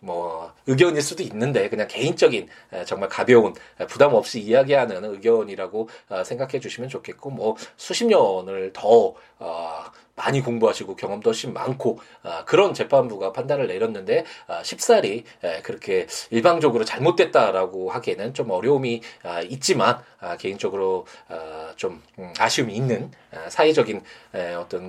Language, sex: Korean, male